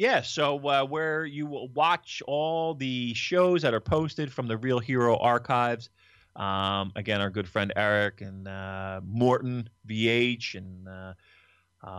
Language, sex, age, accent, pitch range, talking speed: English, male, 30-49, American, 115-175 Hz, 150 wpm